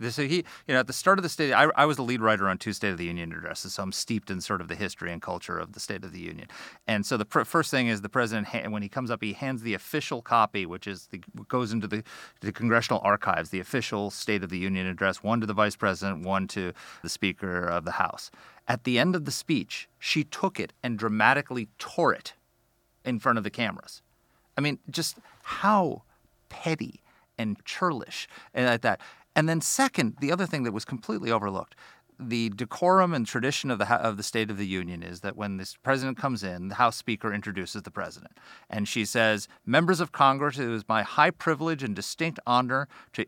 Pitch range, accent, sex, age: 105-135 Hz, American, male, 30-49